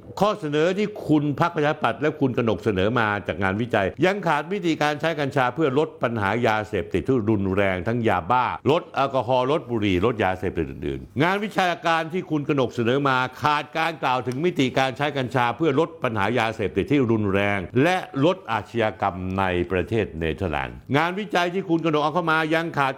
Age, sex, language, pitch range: 60-79, male, Thai, 120-170 Hz